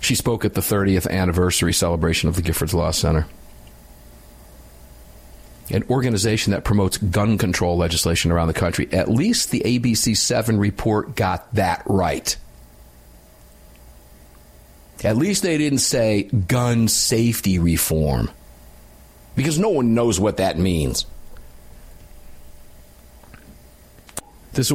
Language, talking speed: English, 115 wpm